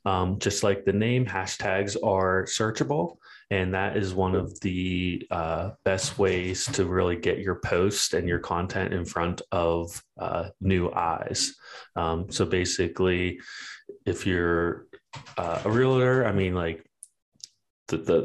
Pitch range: 85-100 Hz